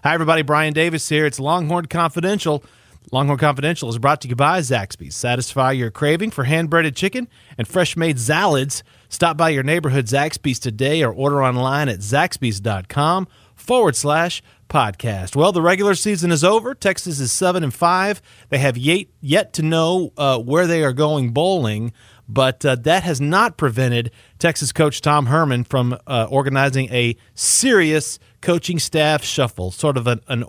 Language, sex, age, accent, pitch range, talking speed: English, male, 30-49, American, 125-155 Hz, 155 wpm